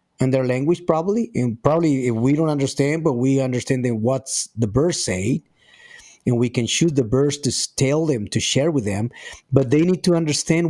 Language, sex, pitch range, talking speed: English, male, 120-150 Hz, 195 wpm